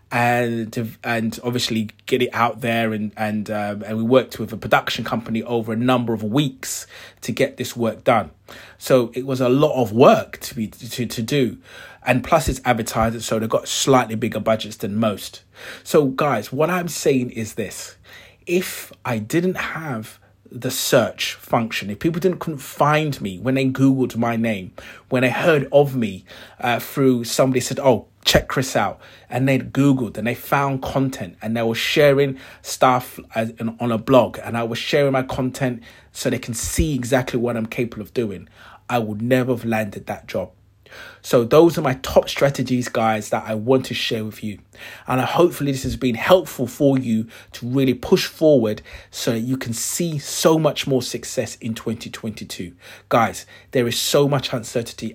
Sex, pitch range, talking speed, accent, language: male, 110-135 Hz, 185 wpm, British, English